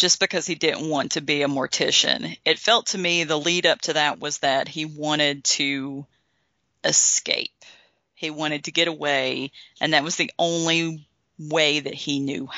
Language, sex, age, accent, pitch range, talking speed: English, female, 40-59, American, 150-180 Hz, 180 wpm